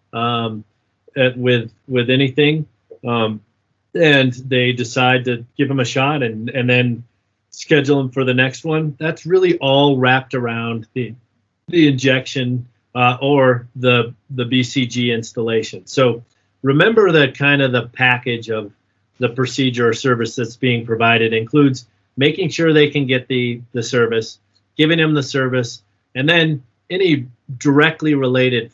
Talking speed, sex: 145 wpm, male